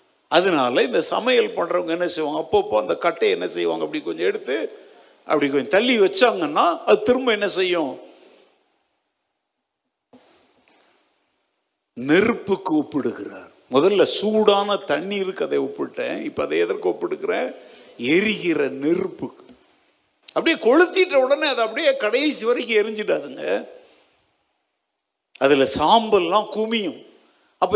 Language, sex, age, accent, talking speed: English, male, 50-69, Indian, 95 wpm